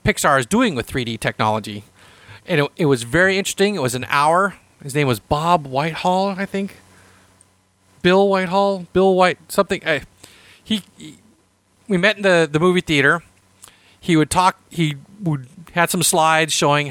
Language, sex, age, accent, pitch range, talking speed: English, male, 40-59, American, 100-160 Hz, 165 wpm